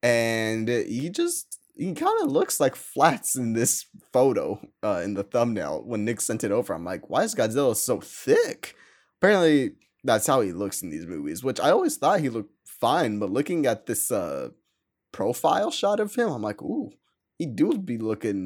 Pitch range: 110-150 Hz